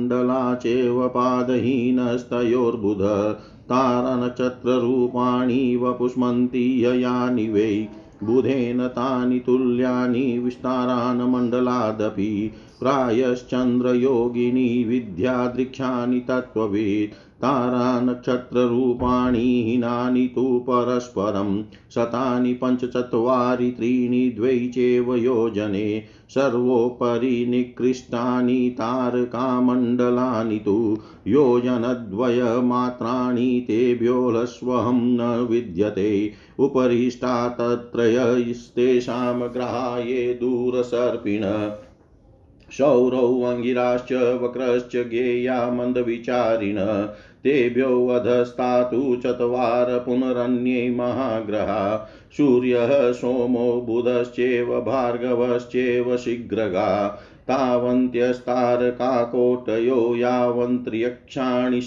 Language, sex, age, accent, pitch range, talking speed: Hindi, male, 50-69, native, 120-125 Hz, 45 wpm